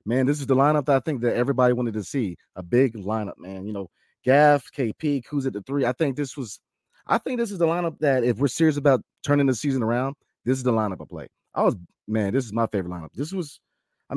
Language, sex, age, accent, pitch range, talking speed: English, male, 30-49, American, 120-175 Hz, 260 wpm